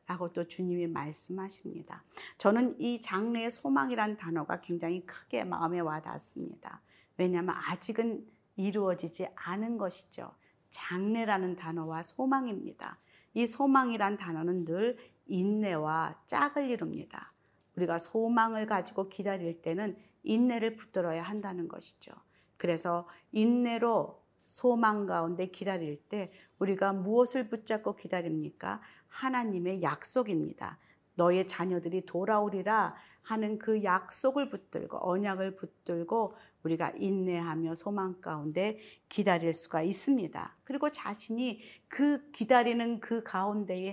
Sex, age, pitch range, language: female, 40-59, 170-220 Hz, Korean